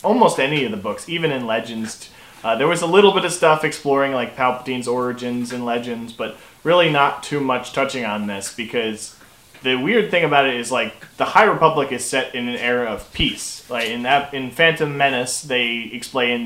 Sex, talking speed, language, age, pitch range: male, 205 wpm, English, 20-39, 110-135 Hz